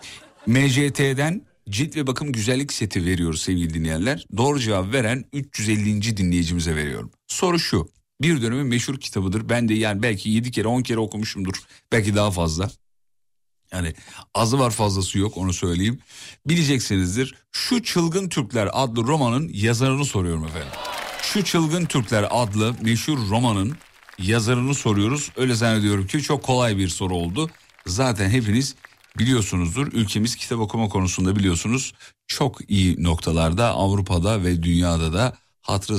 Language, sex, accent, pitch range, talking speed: Turkish, male, native, 95-130 Hz, 135 wpm